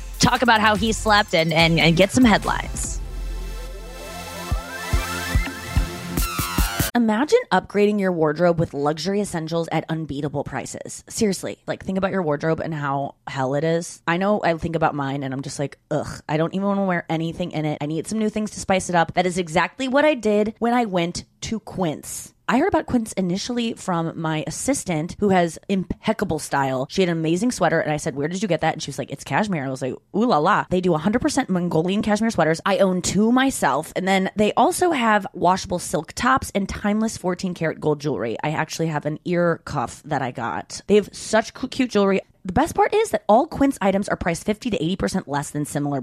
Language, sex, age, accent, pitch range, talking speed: English, female, 20-39, American, 160-220 Hz, 215 wpm